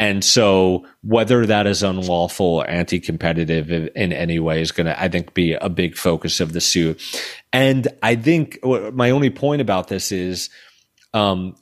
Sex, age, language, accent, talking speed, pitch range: male, 30-49, English, American, 170 wpm, 90-110 Hz